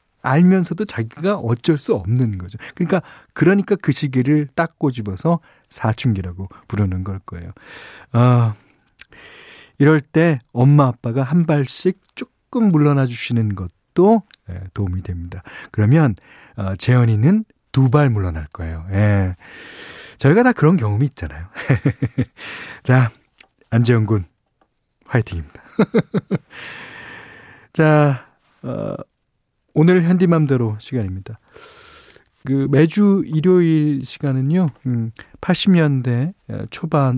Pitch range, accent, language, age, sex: 105-155 Hz, native, Korean, 40-59, male